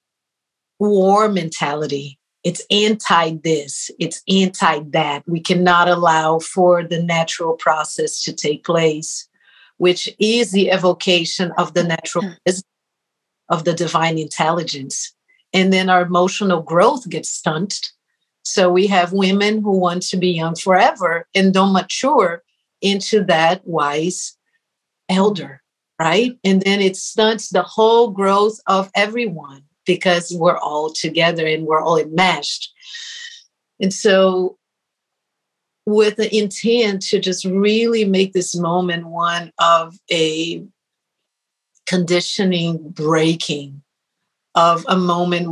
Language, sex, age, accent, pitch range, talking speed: English, female, 50-69, American, 165-200 Hz, 115 wpm